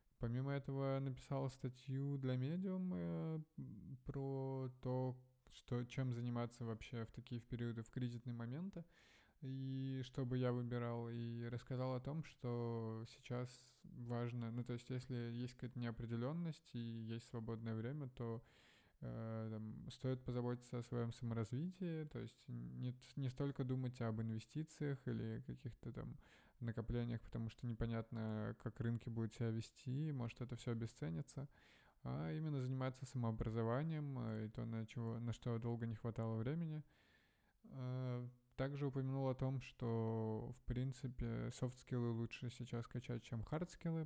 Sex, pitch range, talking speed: male, 115-130 Hz, 135 wpm